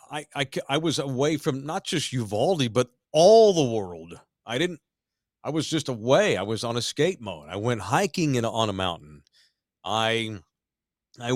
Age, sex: 50-69, male